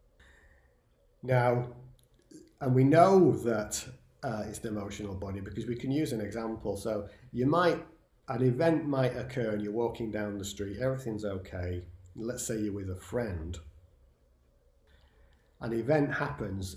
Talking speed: 145 wpm